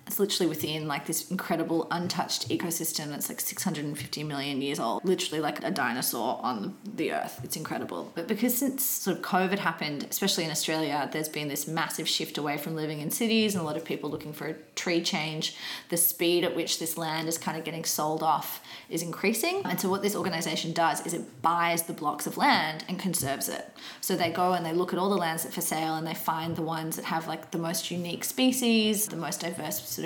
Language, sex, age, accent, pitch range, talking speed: English, female, 20-39, Australian, 160-190 Hz, 220 wpm